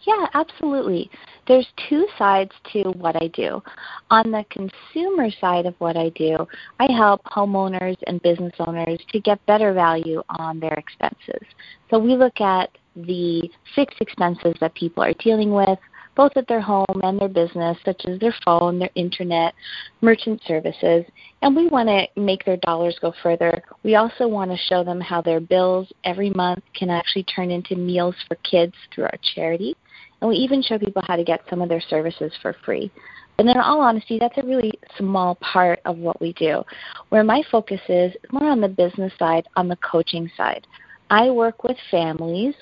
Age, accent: 30-49, American